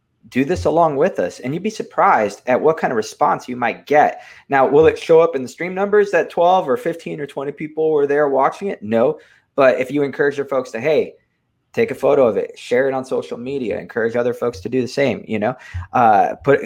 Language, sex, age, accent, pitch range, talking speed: English, male, 20-39, American, 125-200 Hz, 240 wpm